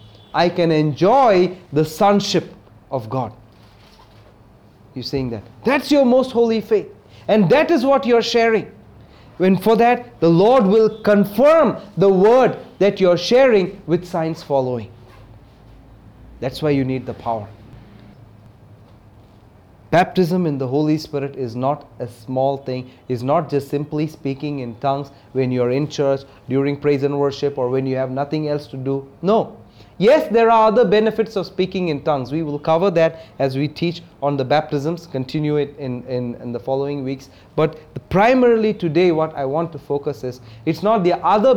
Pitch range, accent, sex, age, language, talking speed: 130-190 Hz, Indian, male, 30-49, English, 165 wpm